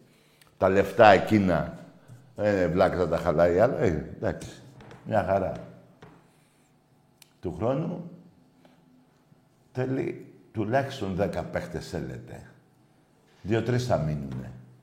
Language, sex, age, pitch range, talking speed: Greek, male, 50-69, 90-135 Hz, 95 wpm